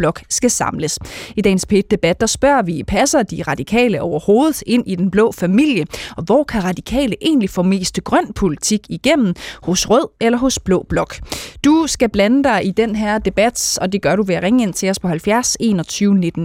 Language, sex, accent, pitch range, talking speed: Danish, female, native, 175-230 Hz, 200 wpm